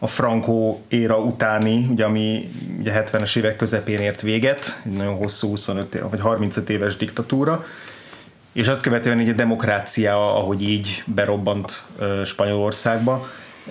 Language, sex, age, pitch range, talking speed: Hungarian, male, 30-49, 100-115 Hz, 135 wpm